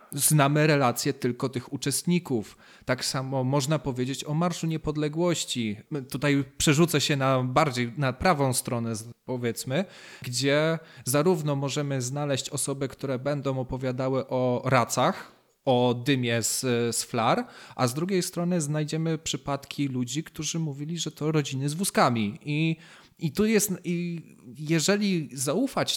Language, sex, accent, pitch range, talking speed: Polish, male, native, 125-155 Hz, 130 wpm